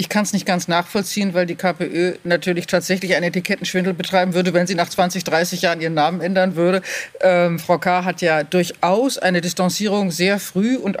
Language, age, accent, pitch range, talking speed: German, 40-59, German, 175-200 Hz, 195 wpm